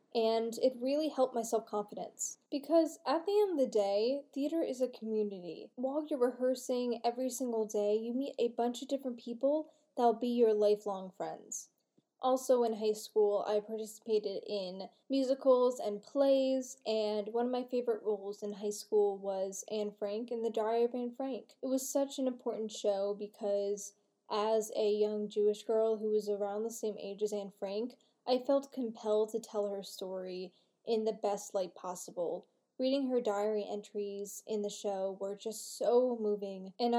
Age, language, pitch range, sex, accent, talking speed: 10-29, English, 210-255 Hz, female, American, 175 wpm